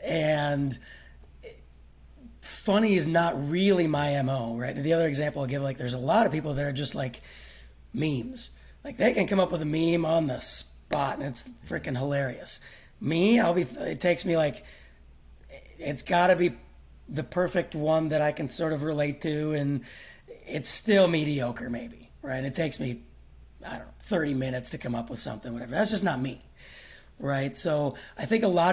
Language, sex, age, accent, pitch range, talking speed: English, male, 30-49, American, 120-165 Hz, 185 wpm